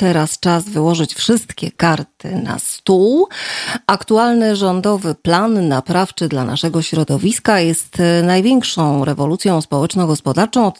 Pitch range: 160-220 Hz